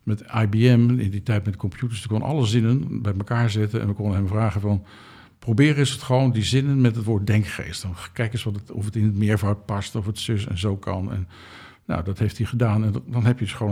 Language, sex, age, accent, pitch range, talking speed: Dutch, male, 60-79, Dutch, 100-125 Hz, 260 wpm